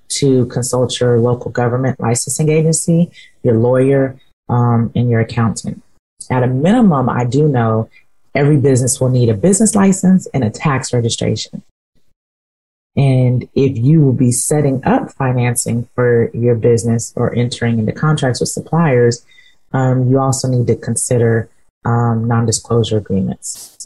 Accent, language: American, English